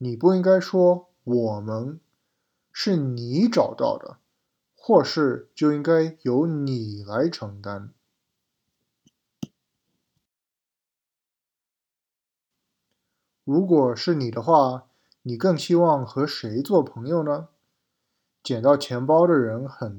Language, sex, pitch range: Chinese, male, 120-160 Hz